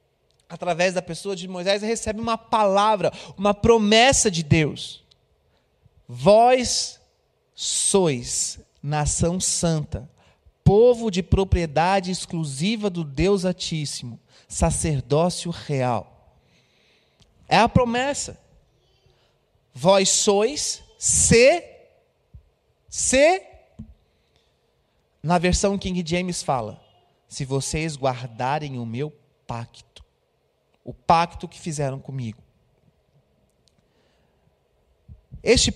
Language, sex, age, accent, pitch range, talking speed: Portuguese, male, 30-49, Brazilian, 165-215 Hz, 85 wpm